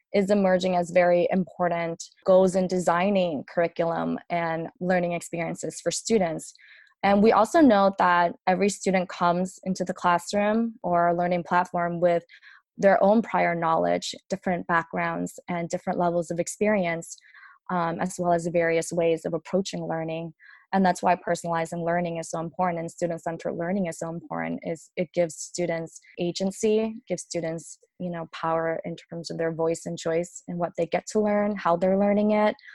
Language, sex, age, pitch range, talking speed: English, female, 20-39, 170-185 Hz, 165 wpm